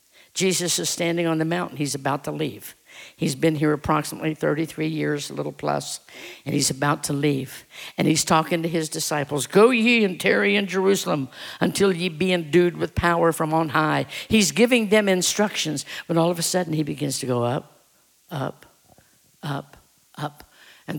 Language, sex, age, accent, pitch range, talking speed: English, female, 60-79, American, 160-210 Hz, 180 wpm